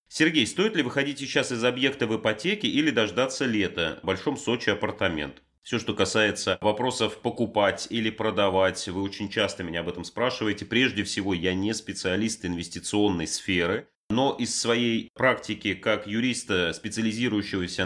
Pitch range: 95-120 Hz